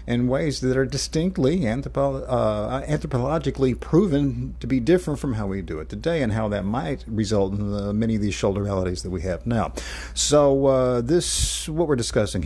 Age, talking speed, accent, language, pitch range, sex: 50-69, 195 wpm, American, English, 100-135 Hz, male